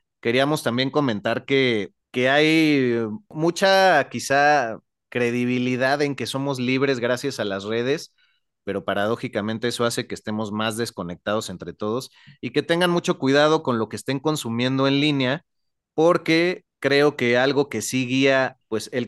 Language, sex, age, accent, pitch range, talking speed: Spanish, male, 30-49, Mexican, 110-135 Hz, 150 wpm